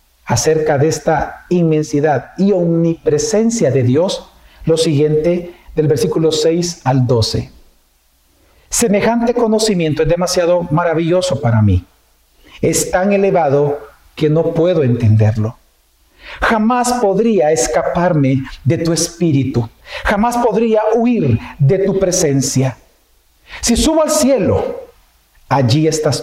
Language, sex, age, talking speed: Spanish, male, 50-69, 110 wpm